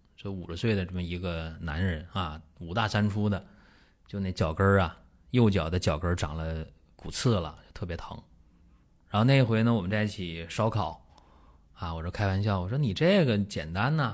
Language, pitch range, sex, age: Chinese, 85-115 Hz, male, 20-39